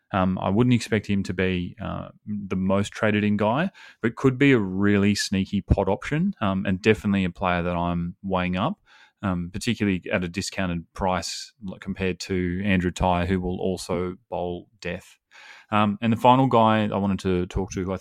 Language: English